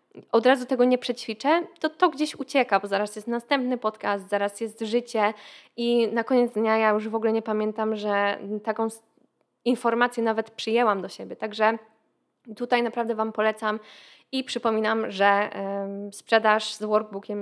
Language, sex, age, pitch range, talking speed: Polish, female, 20-39, 210-245 Hz, 155 wpm